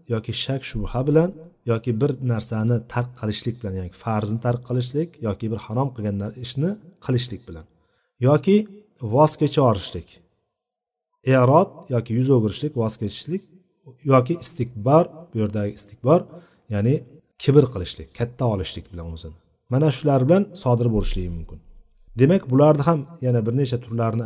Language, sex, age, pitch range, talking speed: Bulgarian, male, 40-59, 115-160 Hz, 135 wpm